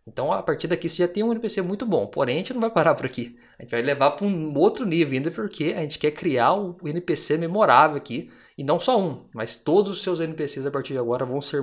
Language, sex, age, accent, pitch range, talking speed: Portuguese, male, 20-39, Brazilian, 135-180 Hz, 270 wpm